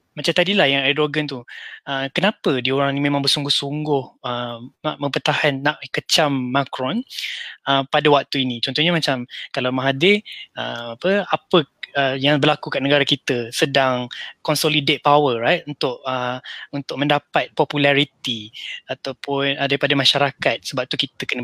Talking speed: 145 wpm